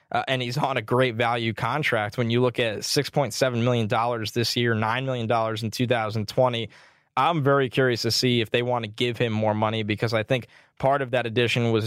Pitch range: 120-150 Hz